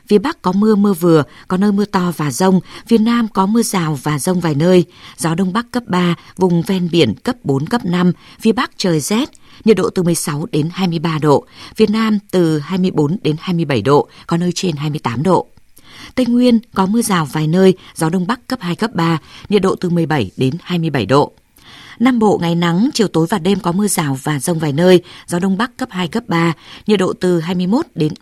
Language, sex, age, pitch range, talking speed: Vietnamese, female, 20-39, 160-210 Hz, 220 wpm